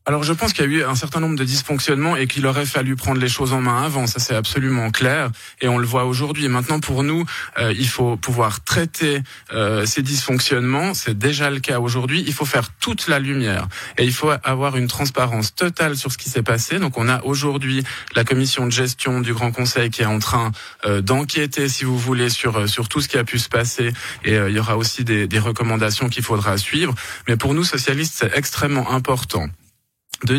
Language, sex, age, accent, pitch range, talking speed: French, male, 20-39, French, 115-140 Hz, 225 wpm